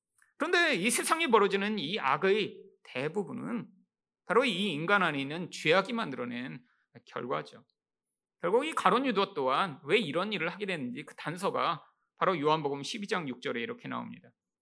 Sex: male